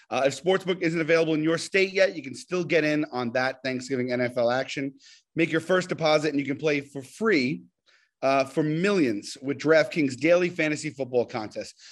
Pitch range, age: 135-185 Hz, 30-49